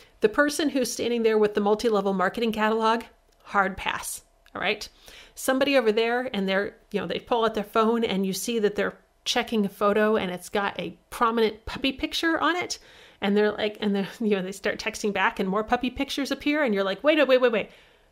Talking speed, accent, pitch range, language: 220 wpm, American, 190-230 Hz, English